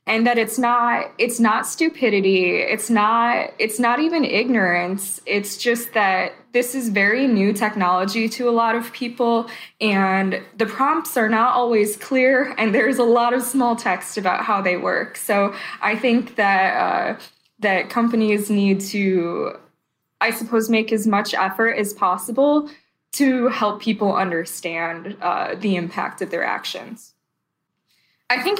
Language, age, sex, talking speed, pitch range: English, 10-29, female, 155 wpm, 195-245 Hz